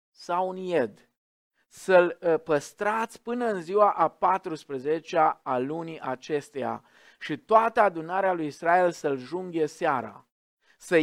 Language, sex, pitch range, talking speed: Romanian, male, 140-195 Hz, 120 wpm